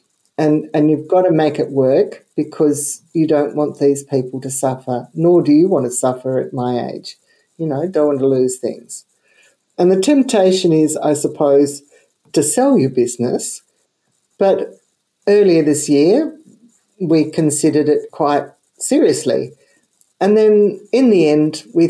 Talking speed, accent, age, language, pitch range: 155 wpm, Australian, 50-69, Czech, 145-185 Hz